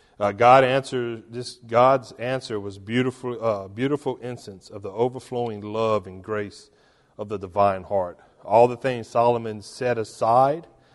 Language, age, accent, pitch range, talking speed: English, 40-59, American, 95-110 Hz, 155 wpm